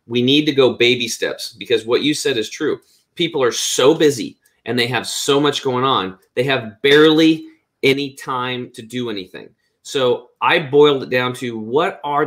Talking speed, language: 190 wpm, English